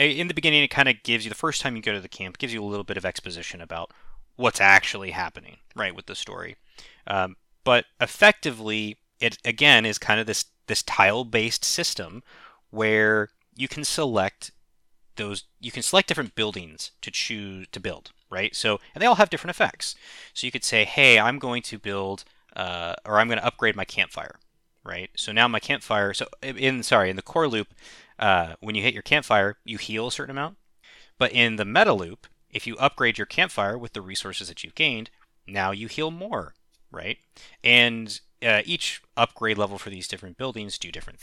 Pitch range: 100-130 Hz